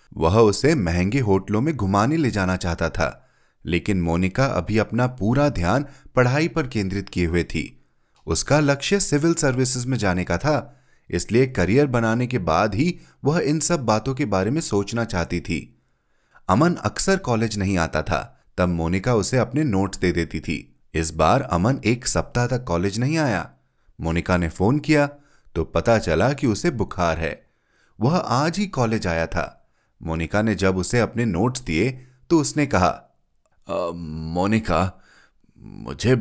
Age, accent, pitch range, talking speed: 30-49, native, 90-130 Hz, 160 wpm